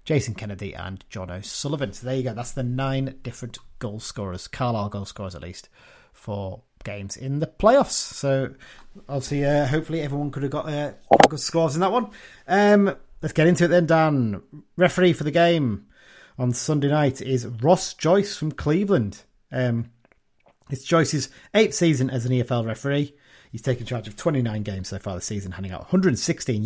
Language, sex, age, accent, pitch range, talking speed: English, male, 30-49, British, 115-155 Hz, 180 wpm